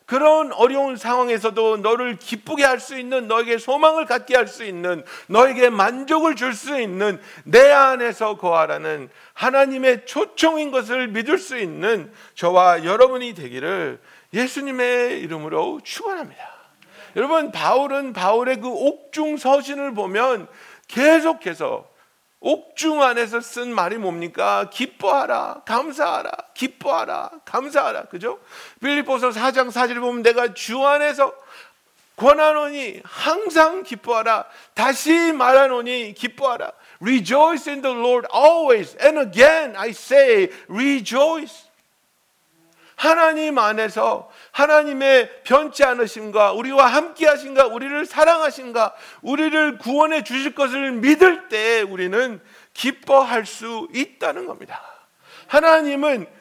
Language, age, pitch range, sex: Korean, 50-69, 235-300 Hz, male